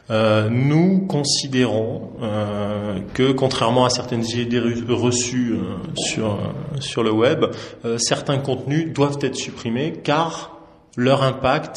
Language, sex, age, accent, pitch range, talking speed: French, male, 20-39, French, 110-130 Hz, 125 wpm